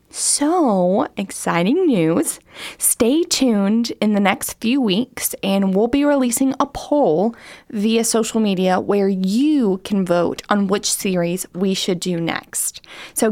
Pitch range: 200-275 Hz